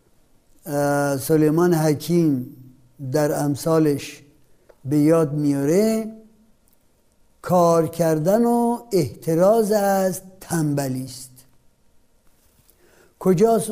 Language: Persian